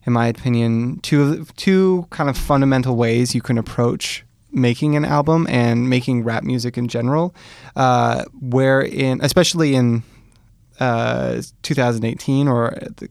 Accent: American